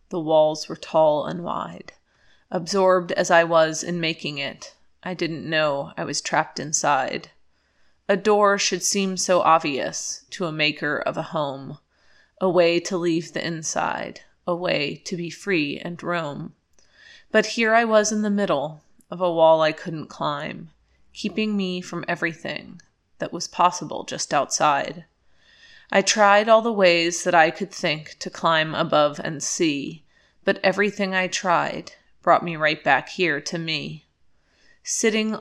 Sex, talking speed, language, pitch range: female, 160 wpm, English, 160-195 Hz